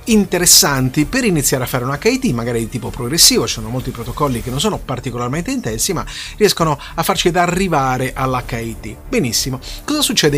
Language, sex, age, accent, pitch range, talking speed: Italian, male, 30-49, native, 130-185 Hz, 170 wpm